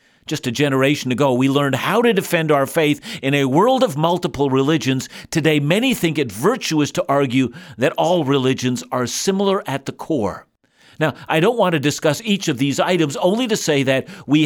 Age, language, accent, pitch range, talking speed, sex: 50-69, English, American, 145-200 Hz, 195 wpm, male